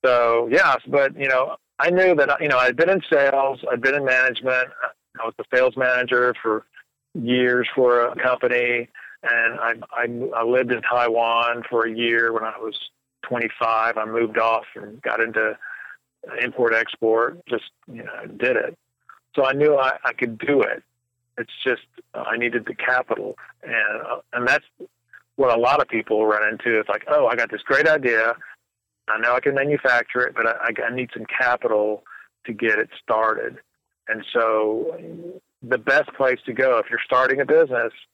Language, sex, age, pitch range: English, male, 40-59, 115-140 Hz